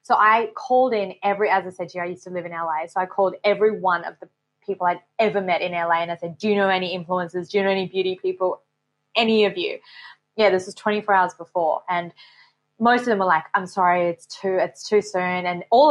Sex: female